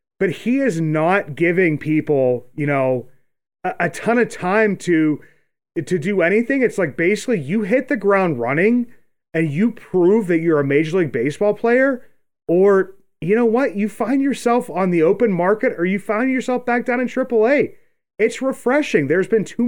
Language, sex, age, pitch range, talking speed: English, male, 30-49, 150-220 Hz, 180 wpm